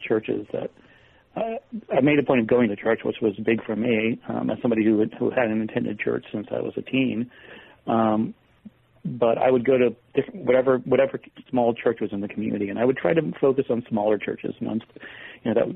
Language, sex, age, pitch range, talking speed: English, male, 40-59, 105-125 Hz, 220 wpm